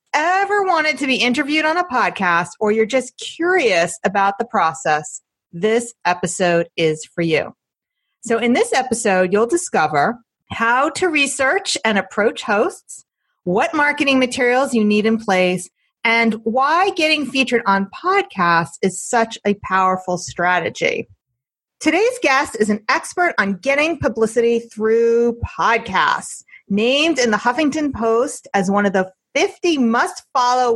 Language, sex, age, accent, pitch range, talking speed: English, female, 40-59, American, 205-285 Hz, 140 wpm